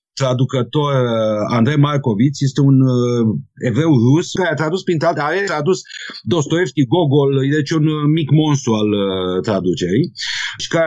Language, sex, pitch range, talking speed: Romanian, male, 120-165 Hz, 135 wpm